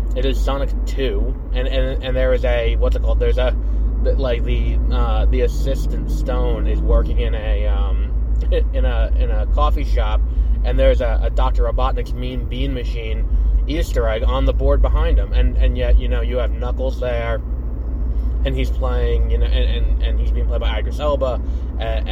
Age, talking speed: 20-39, 195 wpm